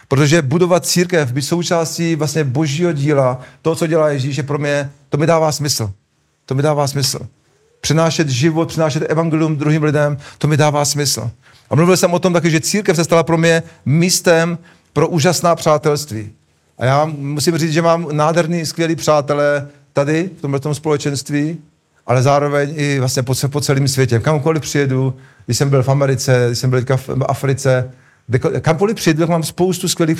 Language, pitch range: Czech, 135-165 Hz